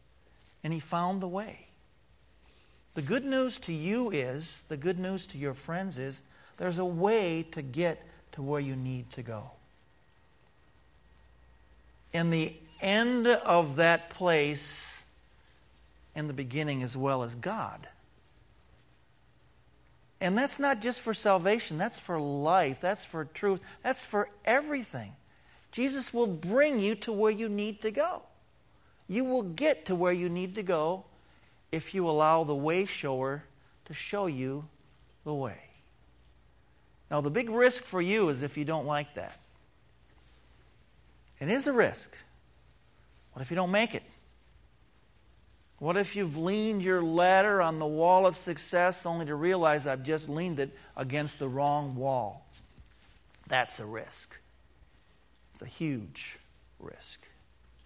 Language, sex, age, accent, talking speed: English, male, 50-69, American, 140 wpm